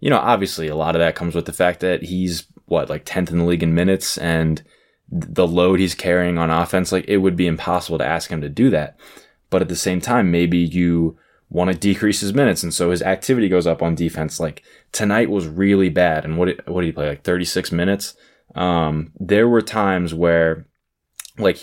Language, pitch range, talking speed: English, 80-95 Hz, 220 wpm